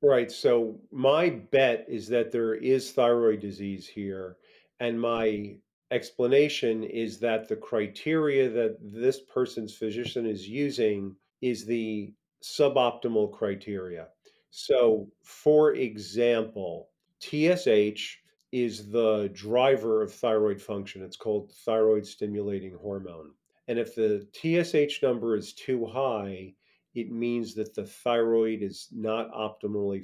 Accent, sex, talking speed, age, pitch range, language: American, male, 120 wpm, 40-59, 105-130 Hz, English